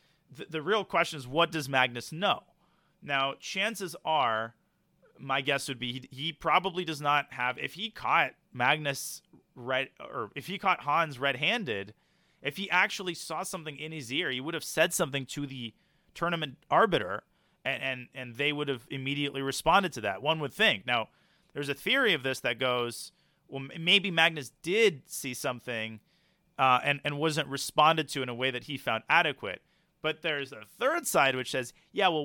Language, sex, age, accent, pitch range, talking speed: English, male, 30-49, American, 130-170 Hz, 185 wpm